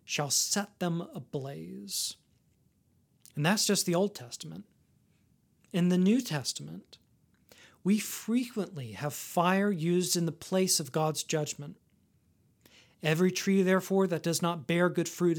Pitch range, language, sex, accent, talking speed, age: 155-195 Hz, English, male, American, 135 wpm, 40-59